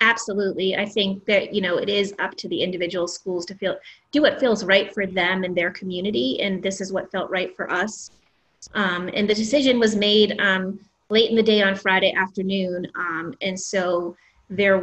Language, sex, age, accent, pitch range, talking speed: English, female, 30-49, American, 185-210 Hz, 200 wpm